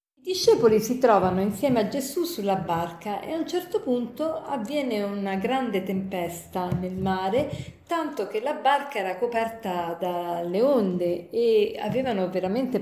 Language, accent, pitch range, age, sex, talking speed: Italian, native, 185-265 Hz, 40-59, female, 140 wpm